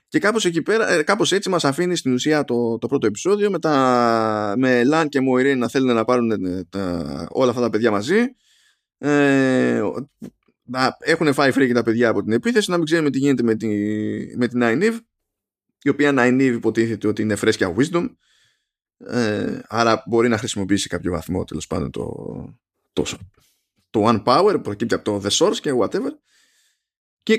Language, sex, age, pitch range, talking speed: Greek, male, 20-39, 115-165 Hz, 165 wpm